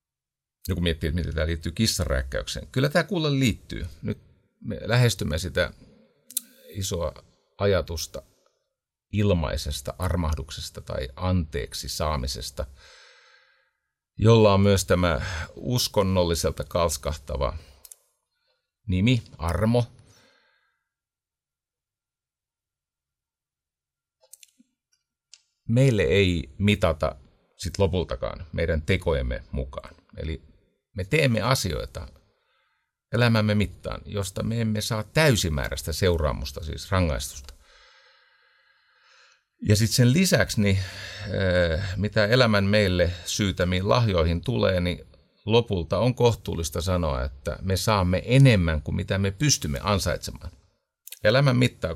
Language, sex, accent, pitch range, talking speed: Finnish, male, native, 80-110 Hz, 90 wpm